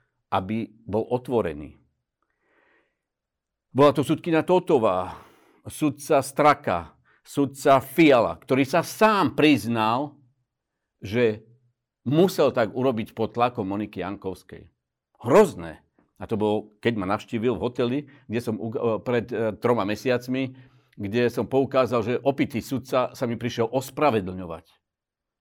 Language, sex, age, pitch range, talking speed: Slovak, male, 50-69, 110-135 Hz, 110 wpm